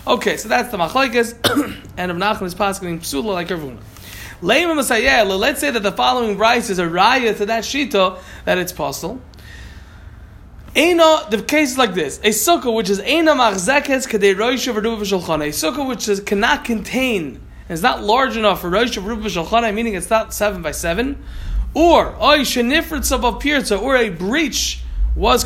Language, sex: Malay, male